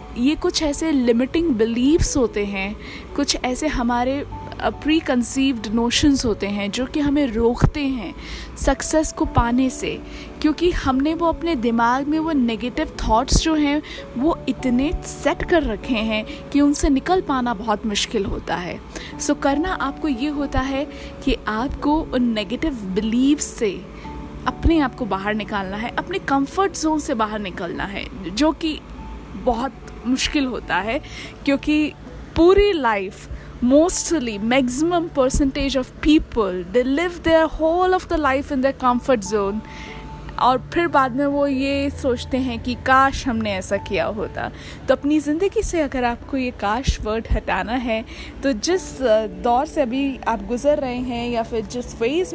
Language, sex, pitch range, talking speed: Hindi, female, 240-305 Hz, 160 wpm